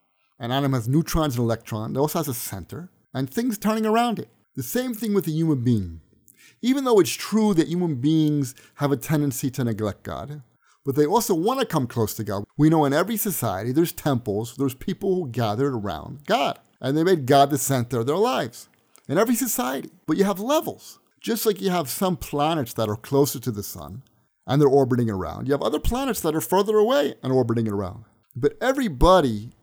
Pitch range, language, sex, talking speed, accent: 120-185 Hz, English, male, 210 wpm, American